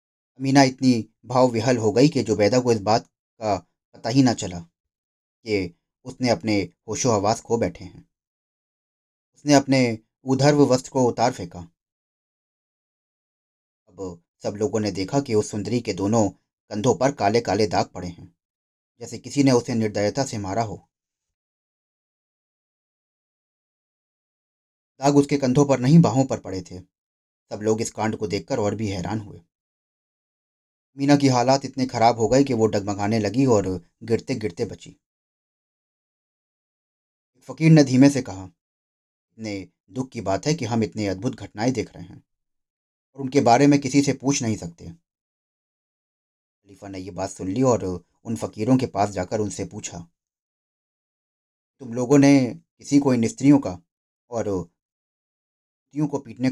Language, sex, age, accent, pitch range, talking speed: Hindi, male, 30-49, native, 95-130 Hz, 150 wpm